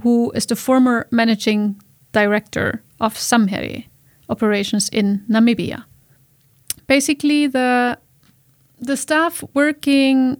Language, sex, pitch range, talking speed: English, female, 210-240 Hz, 90 wpm